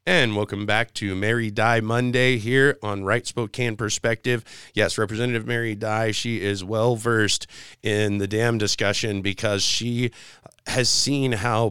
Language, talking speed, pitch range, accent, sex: English, 145 wpm, 100-115 Hz, American, male